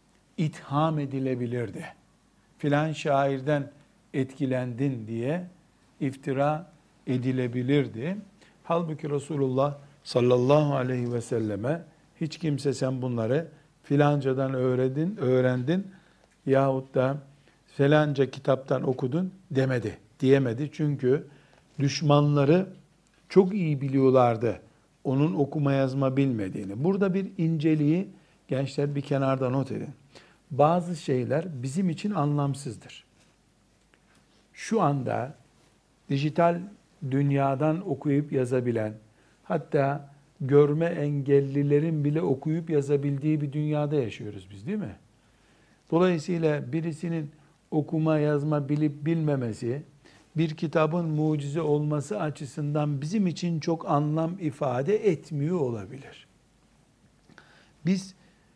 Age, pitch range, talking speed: 60-79, 135-160 Hz, 90 wpm